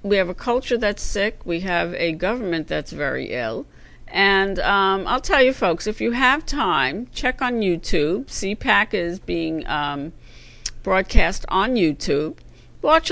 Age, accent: 50-69, American